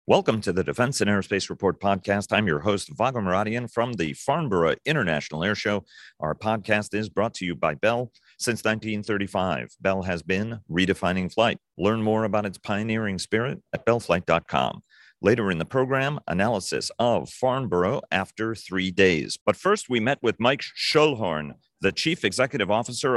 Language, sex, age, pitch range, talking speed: English, male, 40-59, 90-110 Hz, 165 wpm